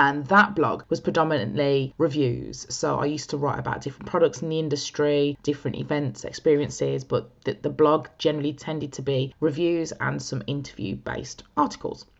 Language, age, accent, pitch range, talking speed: English, 20-39, British, 140-170 Hz, 160 wpm